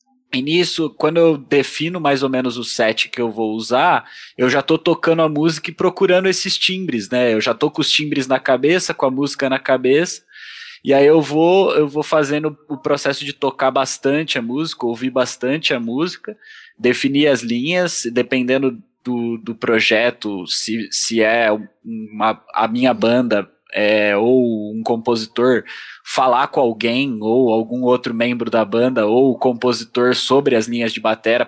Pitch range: 115-150 Hz